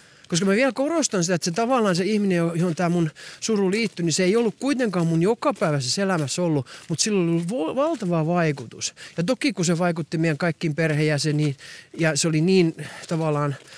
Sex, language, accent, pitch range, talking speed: male, Finnish, native, 150-215 Hz, 185 wpm